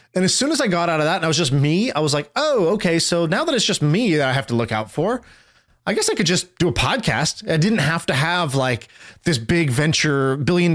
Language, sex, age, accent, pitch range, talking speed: English, male, 20-39, American, 140-180 Hz, 280 wpm